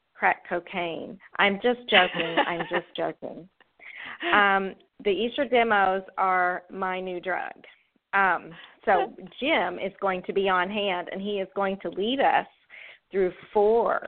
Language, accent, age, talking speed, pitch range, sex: English, American, 40-59, 145 wpm, 175-205 Hz, female